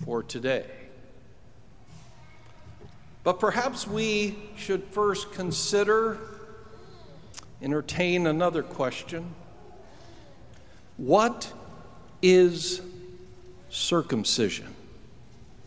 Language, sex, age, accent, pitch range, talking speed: English, male, 60-79, American, 150-210 Hz, 55 wpm